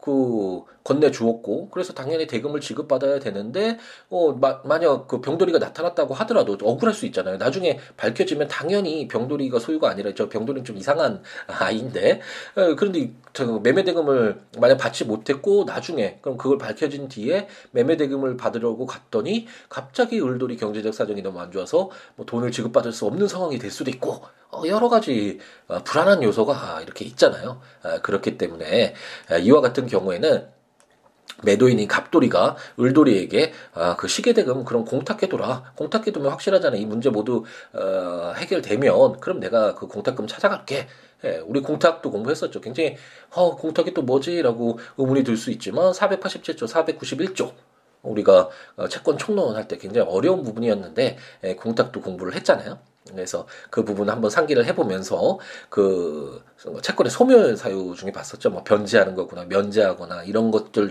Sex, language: male, Korean